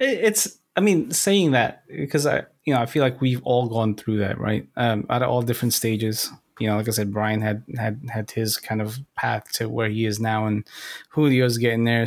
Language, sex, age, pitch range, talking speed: English, male, 20-39, 110-130 Hz, 225 wpm